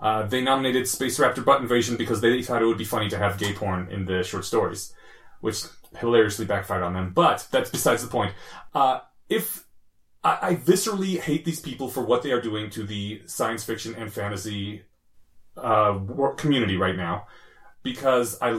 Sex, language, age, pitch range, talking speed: male, English, 30-49, 110-160 Hz, 185 wpm